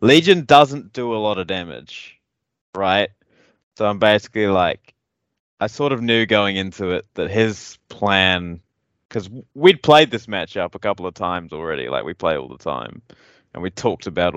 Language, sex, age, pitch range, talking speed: English, male, 20-39, 90-110 Hz, 175 wpm